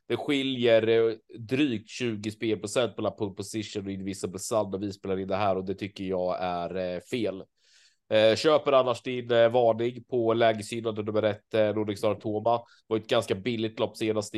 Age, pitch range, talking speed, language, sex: 30-49, 95-110 Hz, 165 wpm, Swedish, male